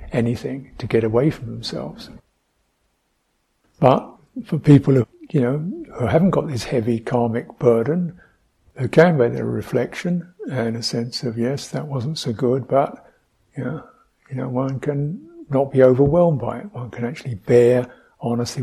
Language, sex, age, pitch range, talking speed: English, male, 60-79, 120-150 Hz, 160 wpm